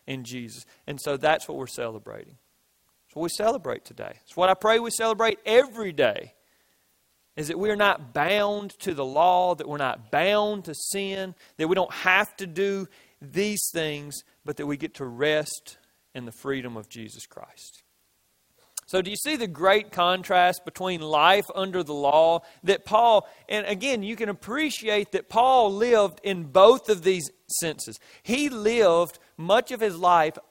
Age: 40-59